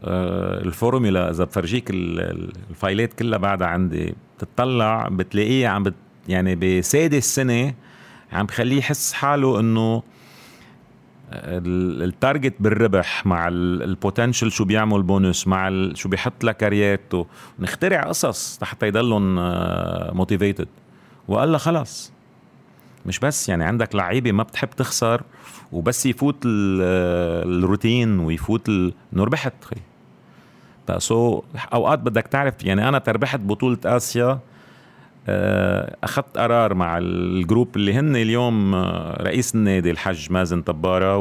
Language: Arabic